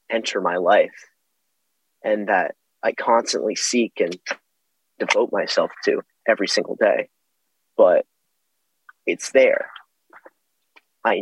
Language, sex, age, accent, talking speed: English, male, 30-49, American, 100 wpm